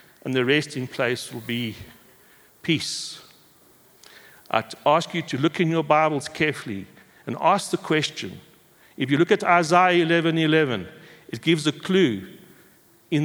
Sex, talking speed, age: male, 145 wpm, 60-79